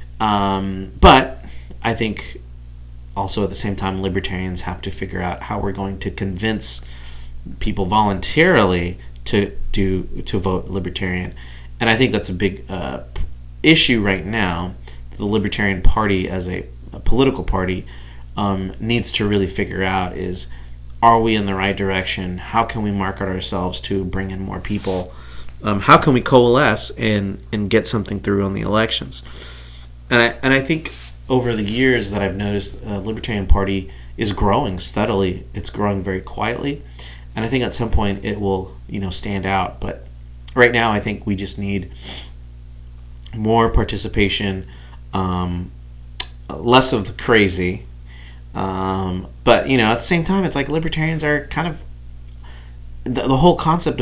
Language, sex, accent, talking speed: English, male, American, 160 wpm